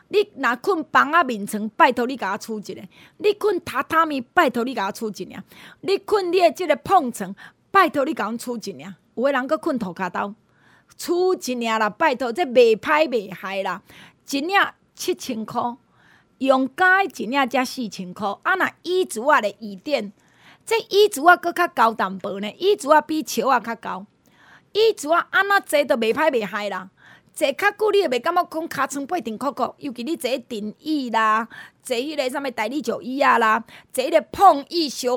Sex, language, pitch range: female, Chinese, 220-330 Hz